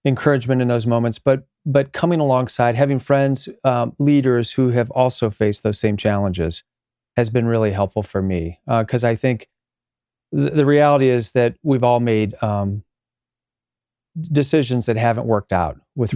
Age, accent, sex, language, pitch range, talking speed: 40-59, American, male, English, 110-140 Hz, 165 wpm